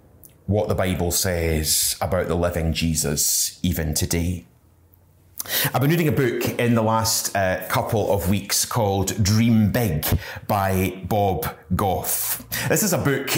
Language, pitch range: English, 100-125 Hz